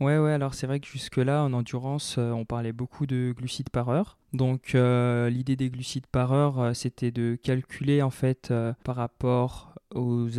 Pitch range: 120-135 Hz